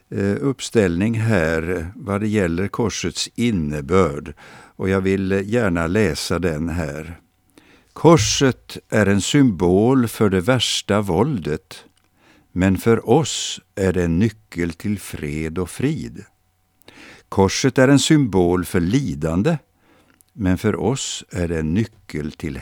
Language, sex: Swedish, male